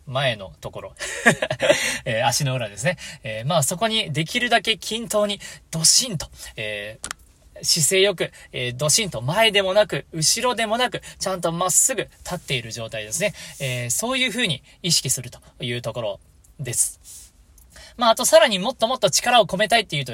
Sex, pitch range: male, 135-205 Hz